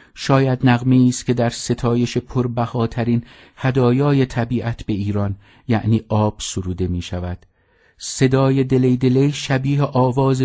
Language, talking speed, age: English, 125 wpm, 50-69